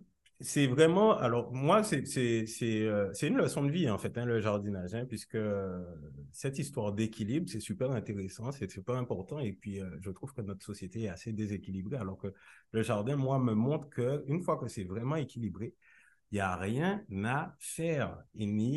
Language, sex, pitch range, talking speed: French, male, 95-120 Hz, 195 wpm